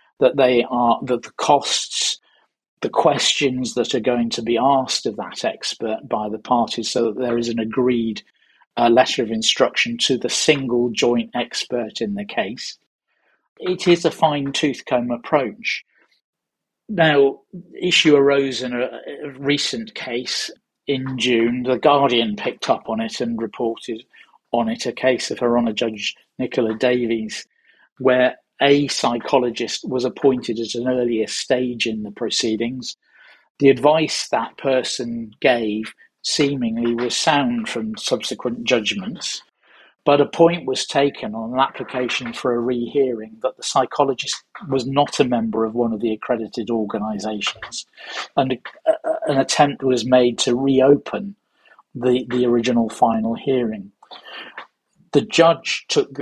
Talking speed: 145 wpm